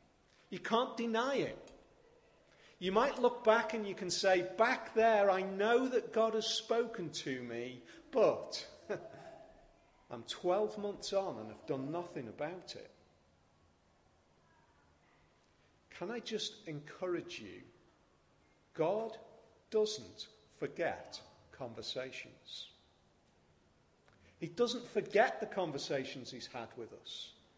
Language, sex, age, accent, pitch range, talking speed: English, male, 40-59, British, 145-220 Hz, 110 wpm